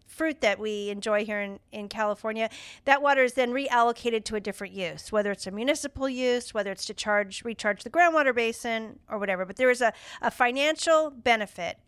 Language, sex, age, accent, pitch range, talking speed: English, female, 50-69, American, 205-255 Hz, 195 wpm